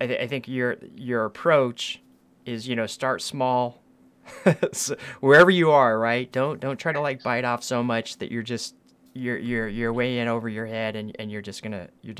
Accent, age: American, 20-39